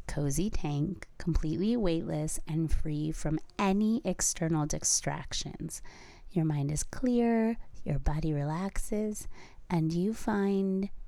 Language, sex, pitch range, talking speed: English, female, 150-195 Hz, 110 wpm